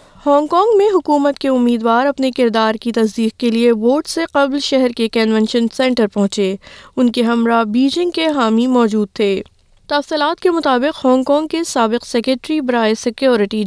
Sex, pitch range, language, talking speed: female, 230-285 Hz, English, 155 wpm